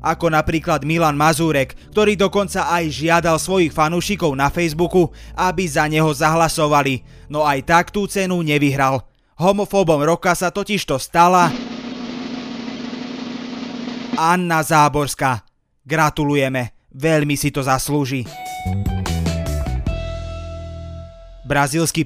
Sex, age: male, 20-39